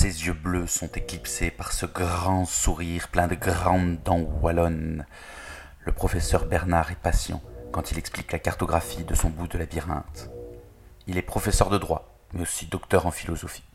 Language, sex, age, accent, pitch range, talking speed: French, male, 30-49, French, 85-95 Hz, 170 wpm